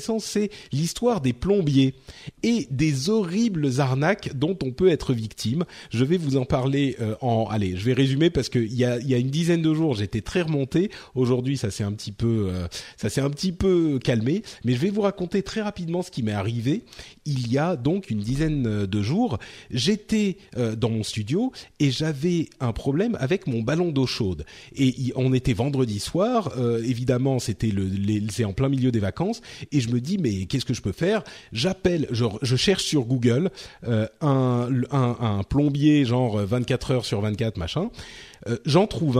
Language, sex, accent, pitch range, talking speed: French, male, French, 115-160 Hz, 190 wpm